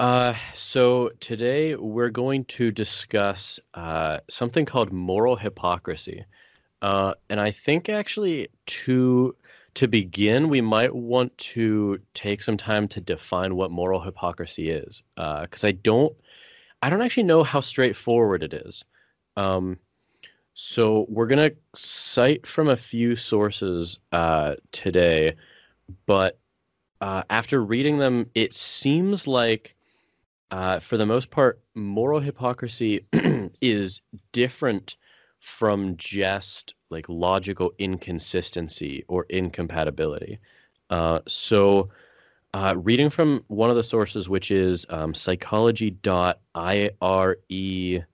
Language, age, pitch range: English, 30-49, 95-125 Hz